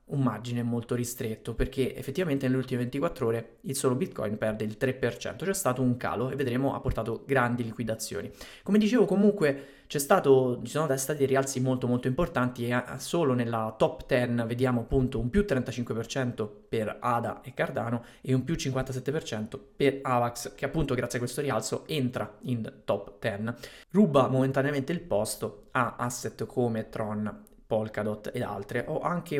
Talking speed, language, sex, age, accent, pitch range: 165 wpm, Italian, male, 20-39, native, 115-135 Hz